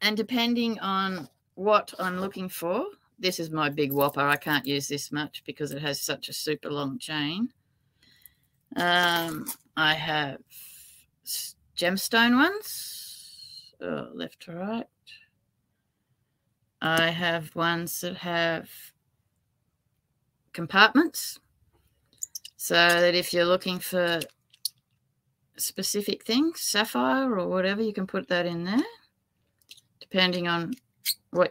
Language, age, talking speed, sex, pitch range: English, 30-49, 110 wpm, female, 155-210 Hz